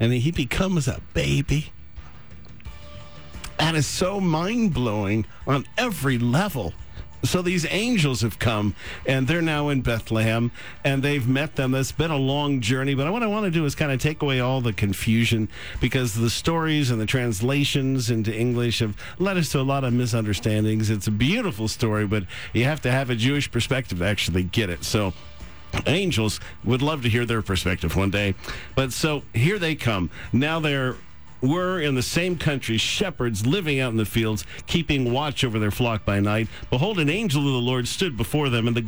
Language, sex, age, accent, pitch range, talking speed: English, male, 50-69, American, 110-145 Hz, 190 wpm